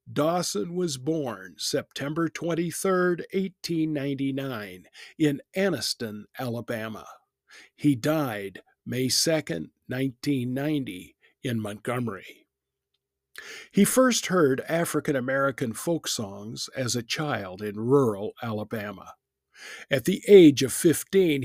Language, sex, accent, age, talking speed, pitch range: English, male, American, 50-69, 90 wpm, 120-165 Hz